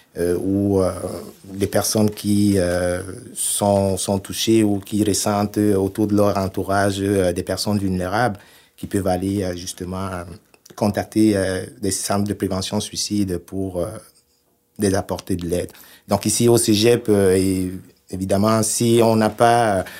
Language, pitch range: French, 95-105 Hz